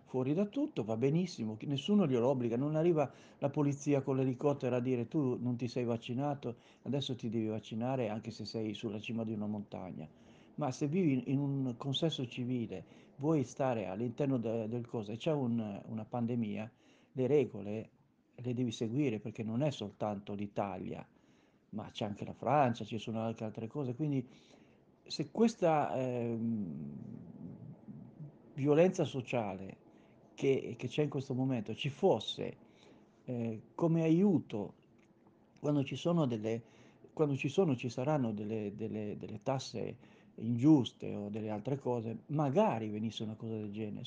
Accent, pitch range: native, 115-150 Hz